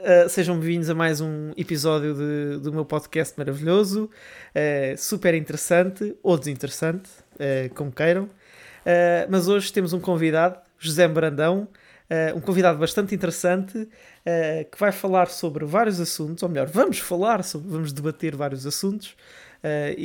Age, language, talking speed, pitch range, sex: 20-39, Portuguese, 150 wpm, 160-200 Hz, male